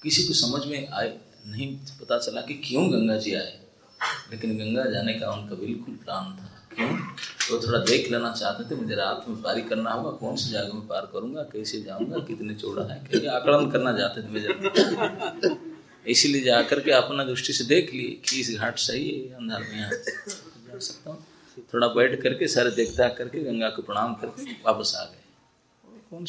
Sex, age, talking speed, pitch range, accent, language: male, 30-49, 190 wpm, 115-155 Hz, native, Hindi